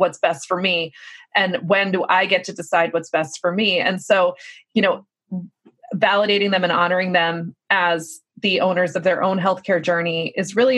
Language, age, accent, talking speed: English, 20-39, American, 190 wpm